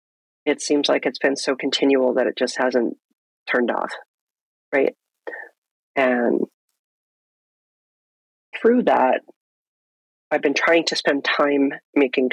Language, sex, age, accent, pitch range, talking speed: English, female, 40-59, American, 130-150 Hz, 115 wpm